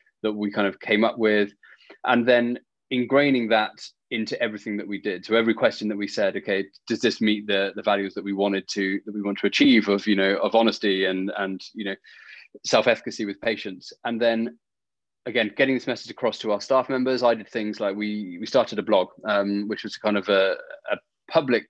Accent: British